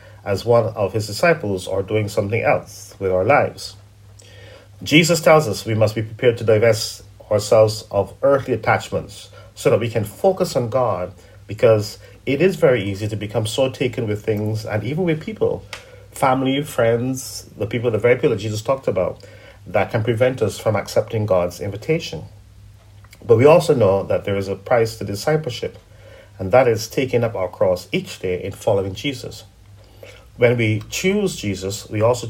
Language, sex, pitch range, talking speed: English, male, 105-130 Hz, 175 wpm